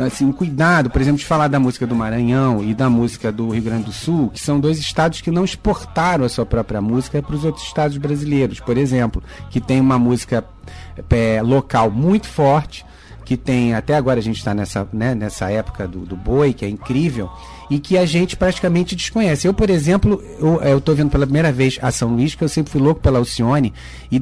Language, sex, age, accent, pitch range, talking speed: Portuguese, male, 40-59, Brazilian, 120-165 Hz, 215 wpm